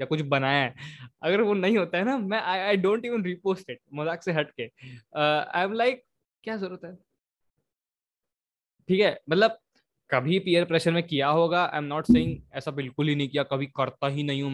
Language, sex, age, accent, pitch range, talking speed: Hindi, male, 20-39, native, 140-195 Hz, 155 wpm